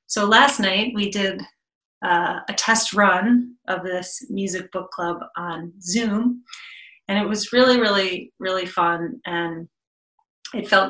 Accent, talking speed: American, 145 wpm